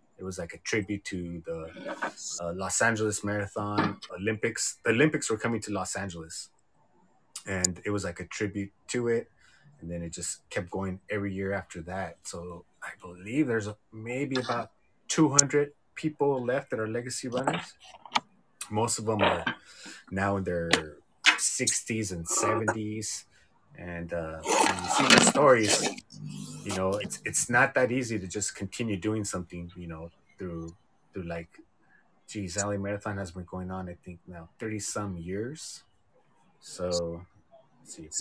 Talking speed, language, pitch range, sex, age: 155 wpm, English, 85-110 Hz, male, 30-49